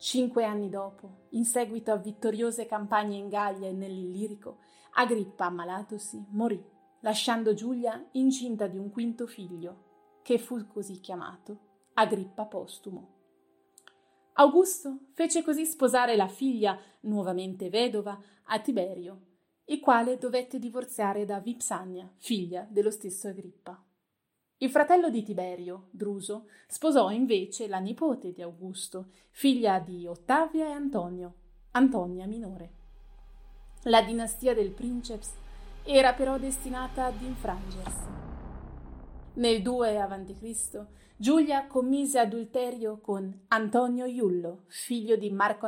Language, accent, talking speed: Italian, native, 115 wpm